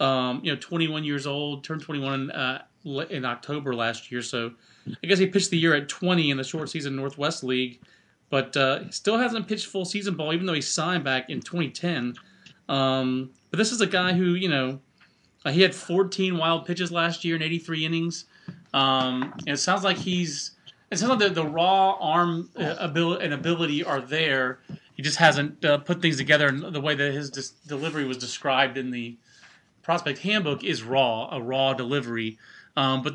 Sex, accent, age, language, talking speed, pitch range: male, American, 30-49, English, 200 wpm, 130-170 Hz